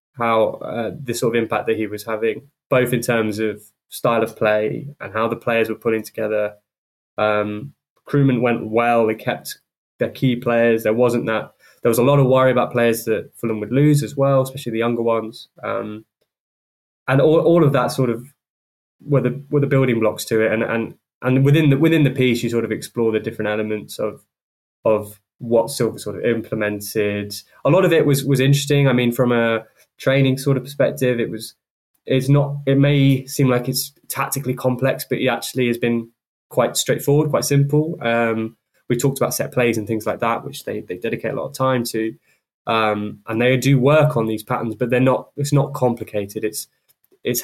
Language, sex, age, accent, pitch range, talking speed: English, male, 10-29, British, 110-135 Hz, 205 wpm